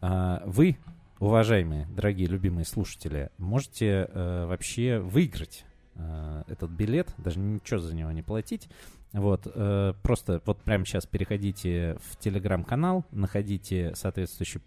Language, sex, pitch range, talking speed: Russian, male, 85-110 Hz, 120 wpm